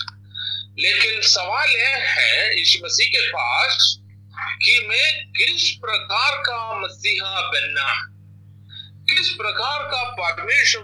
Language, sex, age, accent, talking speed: Hindi, male, 50-69, native, 85 wpm